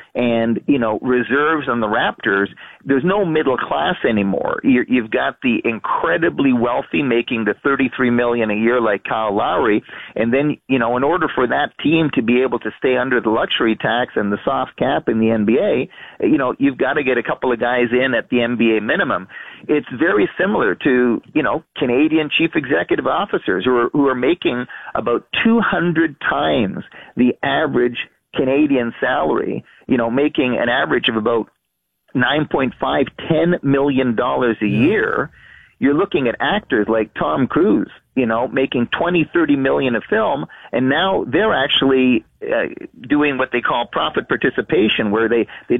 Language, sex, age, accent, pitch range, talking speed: English, male, 40-59, American, 115-150 Hz, 175 wpm